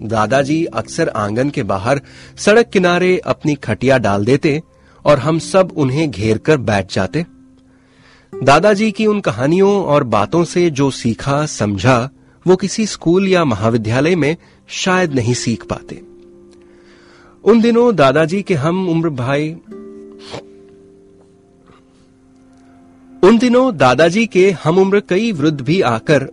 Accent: native